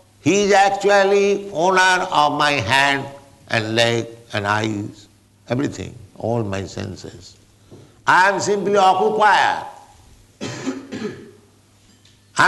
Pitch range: 105-160 Hz